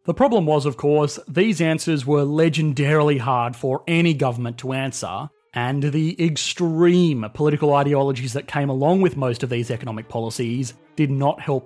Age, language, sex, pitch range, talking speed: 30-49, English, male, 130-170 Hz, 165 wpm